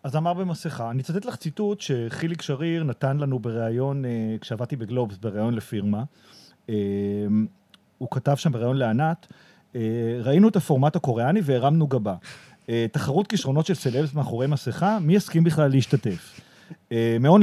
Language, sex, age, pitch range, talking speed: Hebrew, male, 40-59, 120-185 Hz, 130 wpm